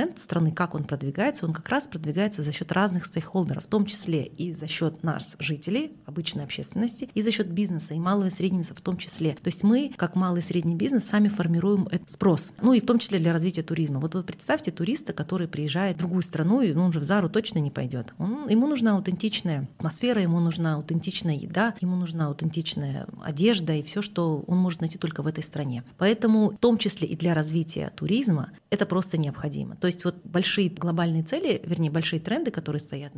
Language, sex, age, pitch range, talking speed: Russian, female, 30-49, 155-195 Hz, 210 wpm